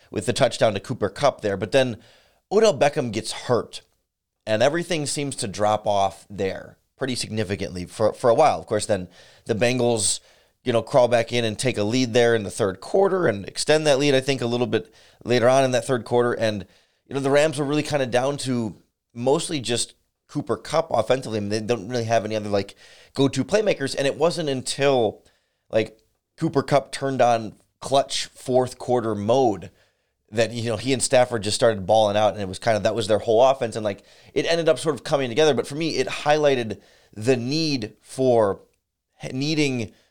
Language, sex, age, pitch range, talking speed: English, male, 30-49, 105-135 Hz, 205 wpm